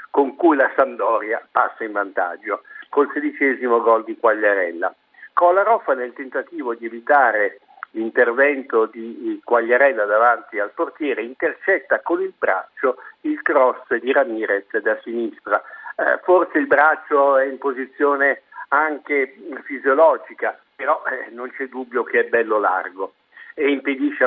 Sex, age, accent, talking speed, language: male, 60-79, native, 130 wpm, Italian